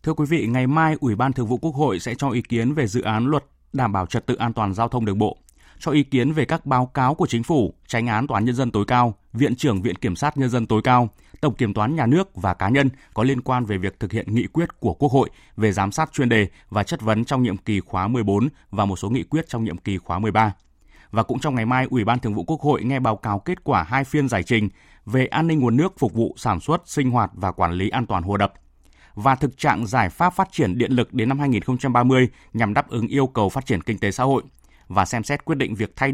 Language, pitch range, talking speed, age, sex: Vietnamese, 105-135 Hz, 275 wpm, 20-39, male